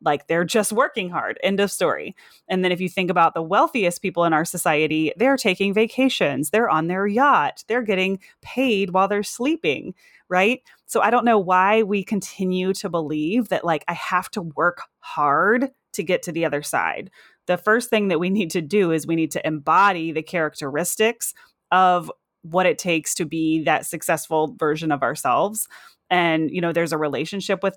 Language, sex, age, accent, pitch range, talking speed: English, female, 30-49, American, 165-200 Hz, 190 wpm